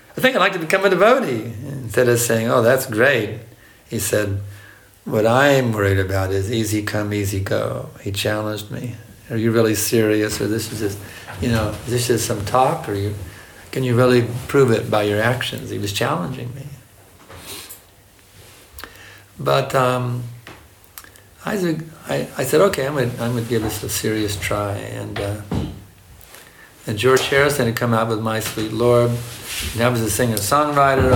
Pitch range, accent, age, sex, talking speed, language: 100-120 Hz, American, 60-79, male, 170 wpm, Danish